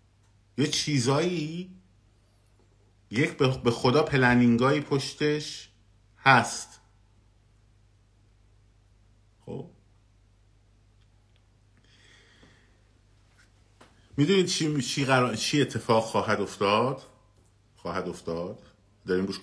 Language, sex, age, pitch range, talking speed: Persian, male, 50-69, 95-110 Hz, 65 wpm